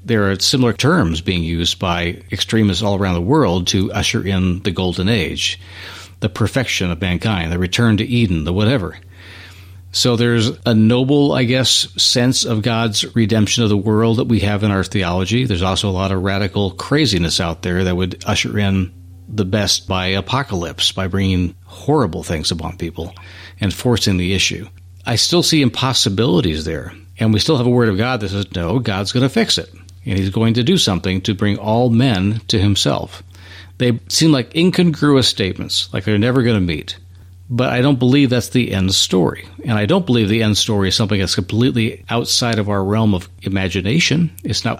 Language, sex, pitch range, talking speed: English, male, 95-120 Hz, 195 wpm